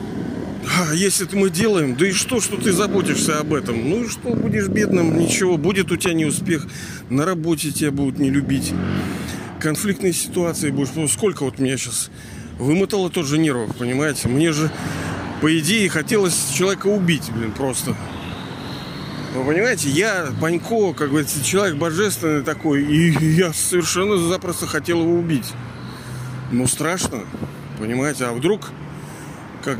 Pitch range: 130-175 Hz